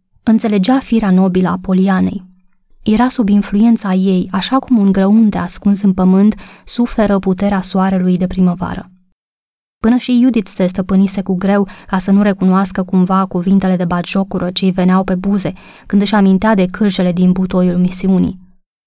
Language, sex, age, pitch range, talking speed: Romanian, female, 20-39, 185-215 Hz, 155 wpm